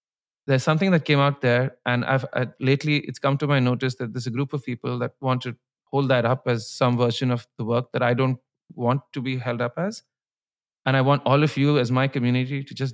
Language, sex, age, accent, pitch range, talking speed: English, male, 30-49, Indian, 125-145 Hz, 245 wpm